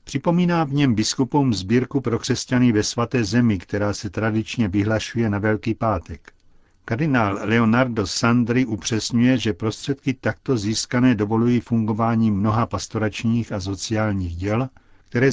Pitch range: 105-120 Hz